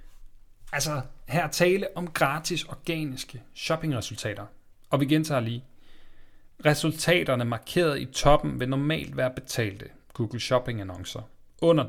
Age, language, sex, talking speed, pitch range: 30-49, Danish, male, 110 wpm, 110-145 Hz